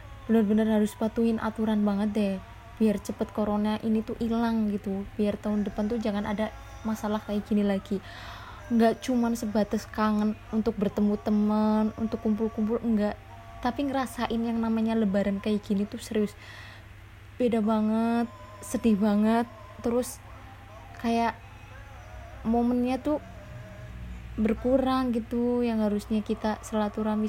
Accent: native